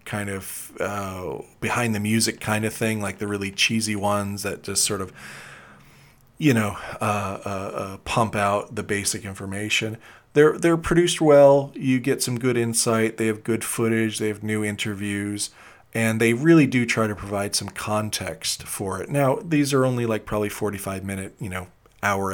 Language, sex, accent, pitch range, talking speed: English, male, American, 100-120 Hz, 180 wpm